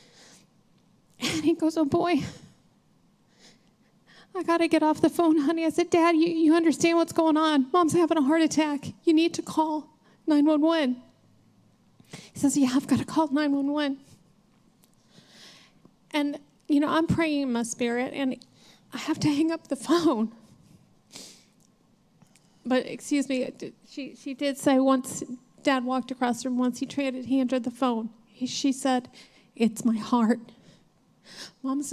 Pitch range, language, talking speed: 235-285 Hz, English, 155 wpm